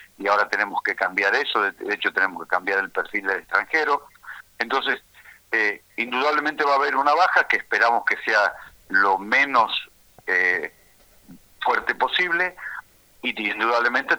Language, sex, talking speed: Spanish, male, 145 wpm